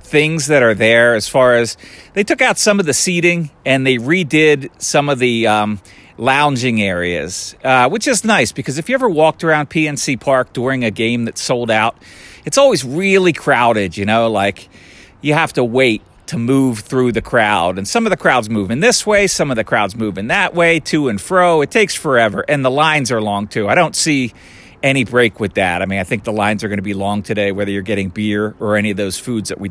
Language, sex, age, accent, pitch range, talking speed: English, male, 40-59, American, 105-155 Hz, 230 wpm